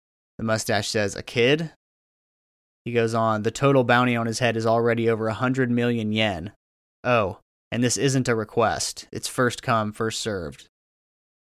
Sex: male